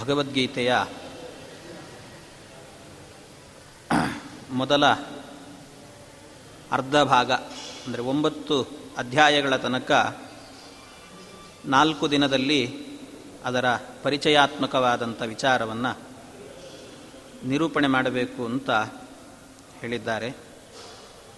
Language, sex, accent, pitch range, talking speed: Kannada, male, native, 130-160 Hz, 50 wpm